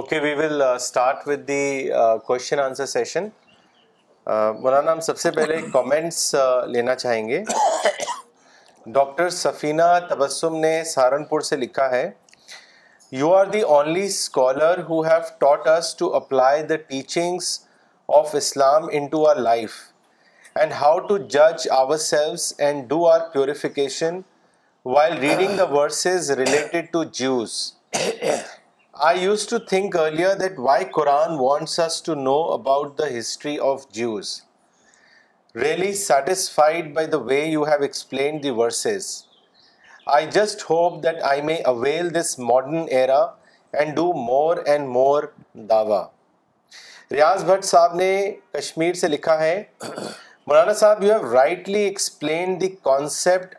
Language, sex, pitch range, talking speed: Urdu, male, 135-175 Hz, 130 wpm